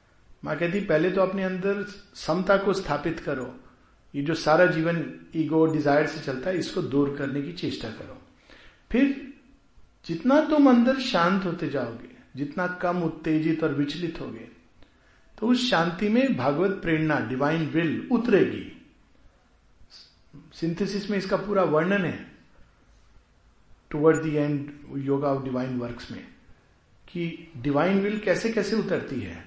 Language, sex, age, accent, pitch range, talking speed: Hindi, male, 50-69, native, 135-195 Hz, 140 wpm